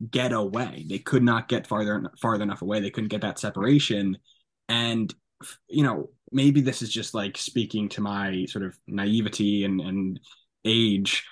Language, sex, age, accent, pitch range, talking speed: English, male, 20-39, American, 105-125 Hz, 170 wpm